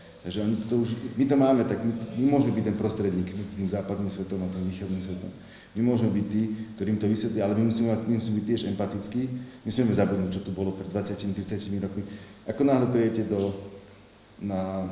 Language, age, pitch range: Slovak, 40-59, 100-115 Hz